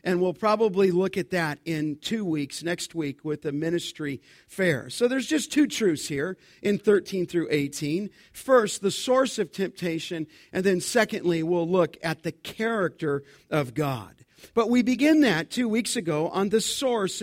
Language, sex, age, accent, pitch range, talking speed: English, male, 50-69, American, 175-240 Hz, 175 wpm